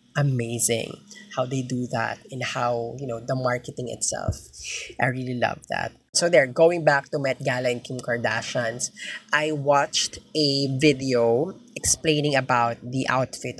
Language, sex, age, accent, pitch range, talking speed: Filipino, female, 20-39, native, 120-150 Hz, 150 wpm